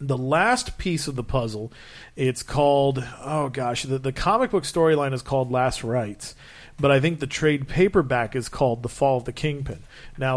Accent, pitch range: American, 125-145 Hz